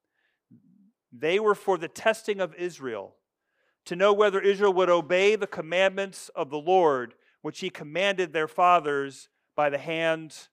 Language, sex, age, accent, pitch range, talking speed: English, male, 40-59, American, 155-185 Hz, 150 wpm